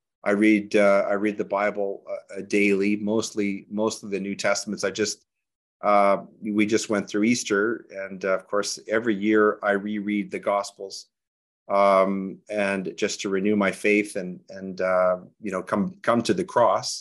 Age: 40-59